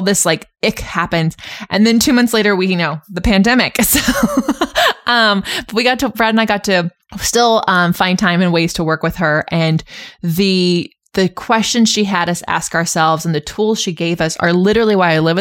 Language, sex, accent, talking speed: English, female, American, 215 wpm